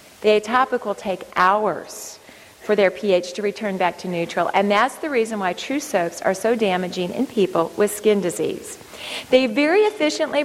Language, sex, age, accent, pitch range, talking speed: English, female, 40-59, American, 195-255 Hz, 180 wpm